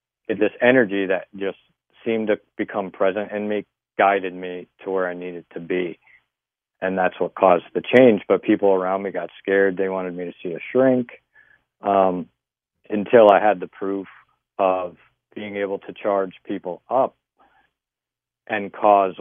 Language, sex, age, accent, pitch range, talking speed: English, male, 40-59, American, 90-105 Hz, 160 wpm